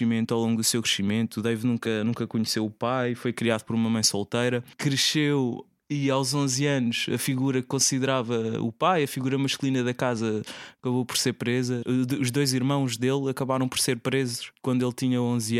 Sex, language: male, Portuguese